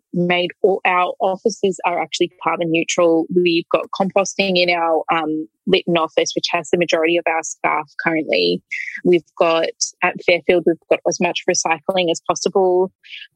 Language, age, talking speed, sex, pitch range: English, 20-39, 160 wpm, female, 165-195 Hz